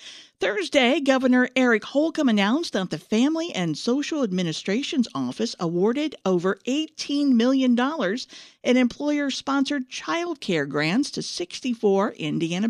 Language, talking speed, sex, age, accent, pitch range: English, 115 wpm, female, 50-69, American, 175-270 Hz